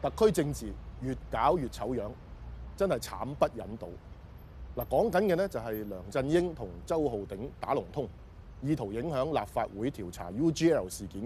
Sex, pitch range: male, 110-165 Hz